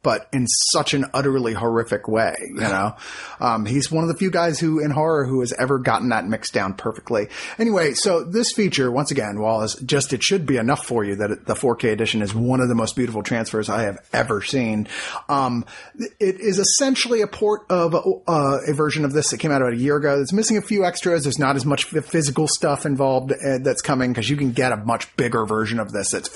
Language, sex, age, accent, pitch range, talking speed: English, male, 30-49, American, 125-160 Hz, 235 wpm